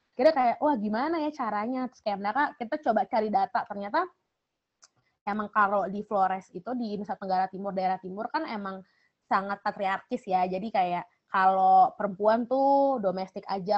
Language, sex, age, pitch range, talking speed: Indonesian, female, 20-39, 195-275 Hz, 150 wpm